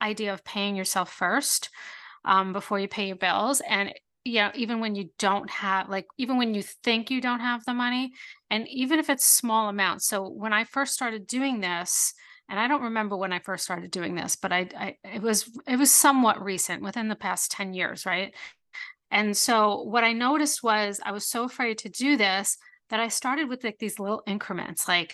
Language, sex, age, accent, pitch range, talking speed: English, female, 30-49, American, 195-235 Hz, 210 wpm